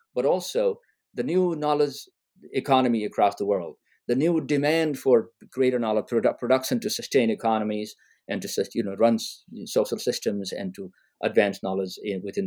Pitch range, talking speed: 105-170 Hz, 140 wpm